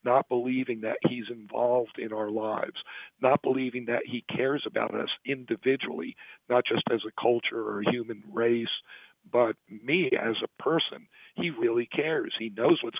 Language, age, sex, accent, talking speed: English, 50-69, male, American, 165 wpm